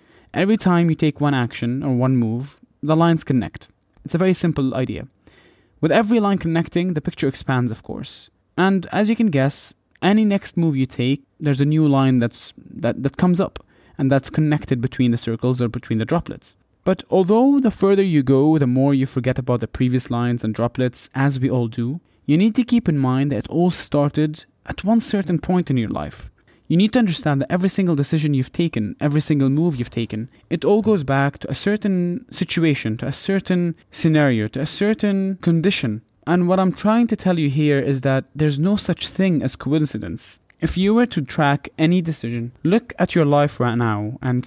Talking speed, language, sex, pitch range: 205 wpm, English, male, 125-180 Hz